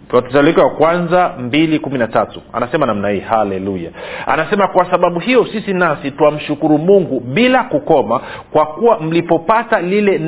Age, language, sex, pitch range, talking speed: 50-69, Swahili, male, 145-190 Hz, 140 wpm